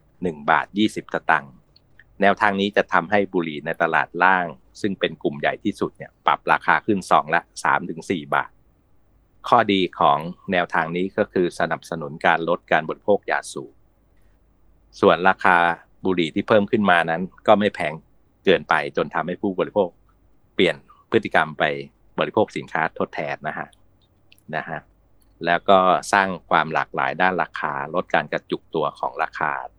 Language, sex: English, male